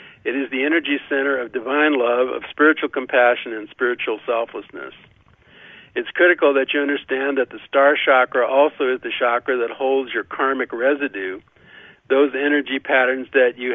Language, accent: English, American